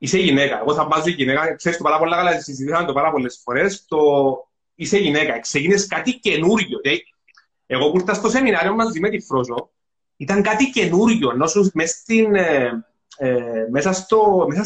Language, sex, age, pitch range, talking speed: Greek, male, 30-49, 160-220 Hz, 145 wpm